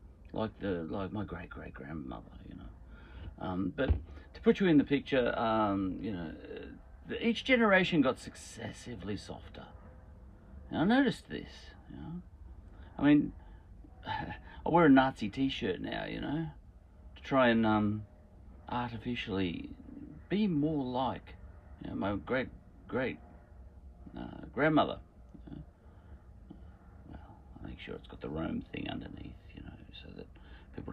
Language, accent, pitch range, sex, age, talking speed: English, Australian, 85-110 Hz, male, 40-59, 130 wpm